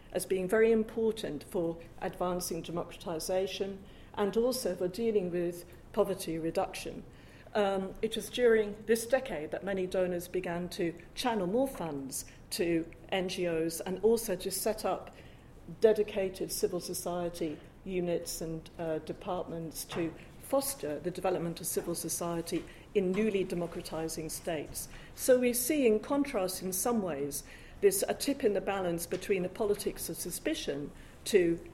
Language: English